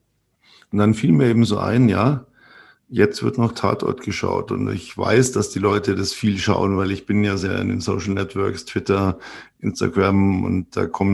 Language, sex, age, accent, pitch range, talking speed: German, male, 50-69, German, 95-110 Hz, 195 wpm